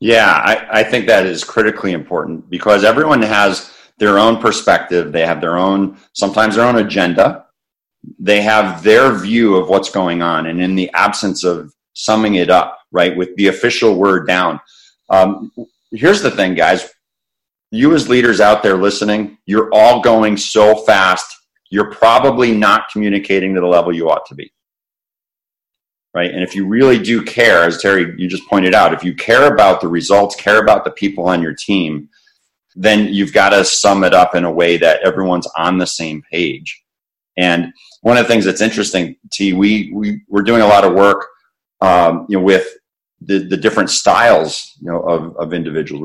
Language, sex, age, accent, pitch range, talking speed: English, male, 40-59, American, 90-105 Hz, 180 wpm